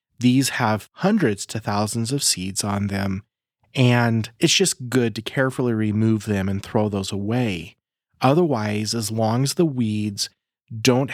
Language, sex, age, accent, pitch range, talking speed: English, male, 30-49, American, 105-125 Hz, 150 wpm